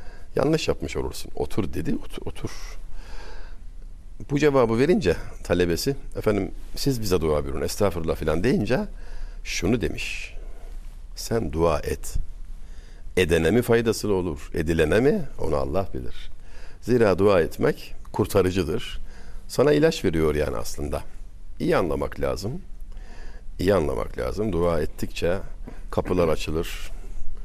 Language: Turkish